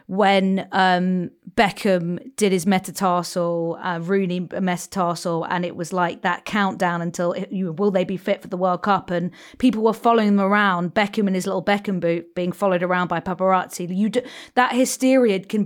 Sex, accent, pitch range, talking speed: female, British, 180-215 Hz, 185 wpm